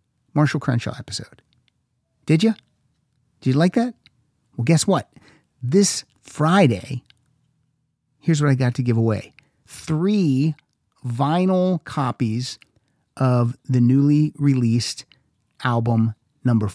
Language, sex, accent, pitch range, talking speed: English, male, American, 120-150 Hz, 110 wpm